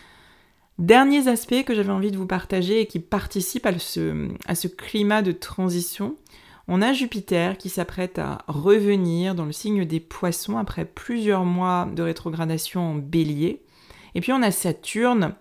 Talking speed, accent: 160 wpm, French